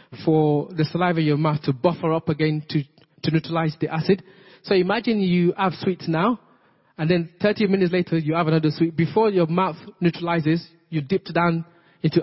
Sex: male